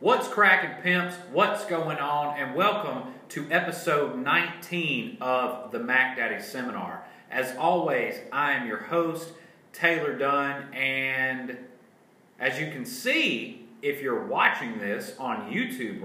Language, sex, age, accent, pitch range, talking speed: English, male, 30-49, American, 125-180 Hz, 130 wpm